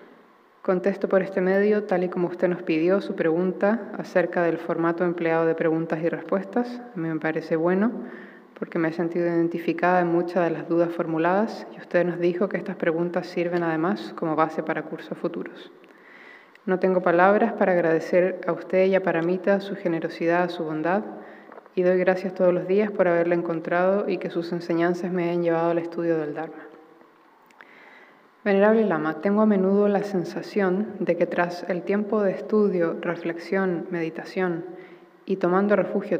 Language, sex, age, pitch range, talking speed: Spanish, female, 20-39, 170-195 Hz, 170 wpm